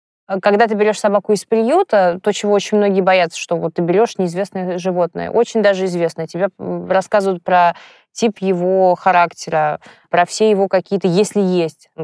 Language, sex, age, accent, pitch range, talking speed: Russian, female, 20-39, native, 175-200 Hz, 160 wpm